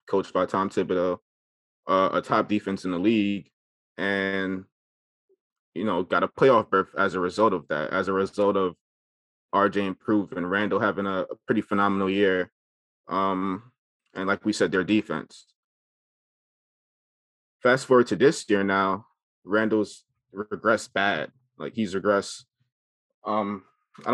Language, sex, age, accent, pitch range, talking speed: English, male, 20-39, American, 95-115 Hz, 140 wpm